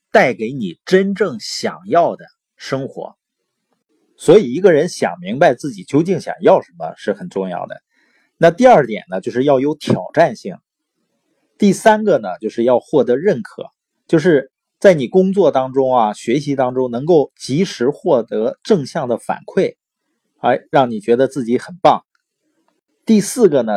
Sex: male